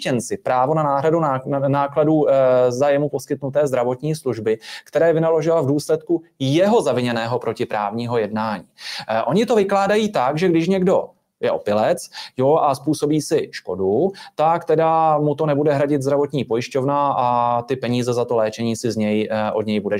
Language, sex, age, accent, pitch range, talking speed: Czech, male, 30-49, native, 130-165 Hz, 155 wpm